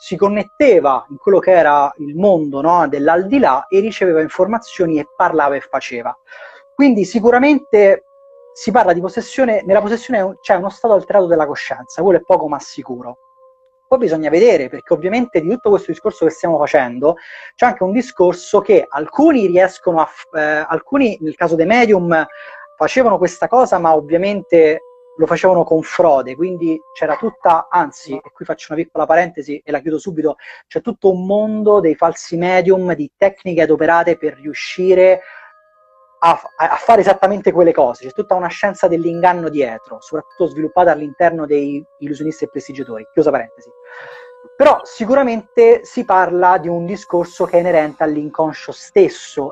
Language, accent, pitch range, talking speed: Italian, native, 155-225 Hz, 155 wpm